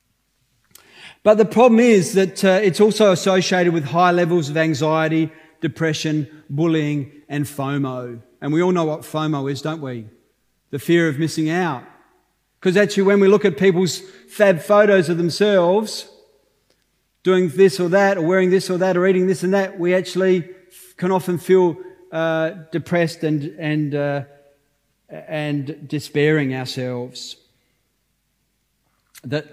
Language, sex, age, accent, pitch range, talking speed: English, male, 40-59, Australian, 155-195 Hz, 145 wpm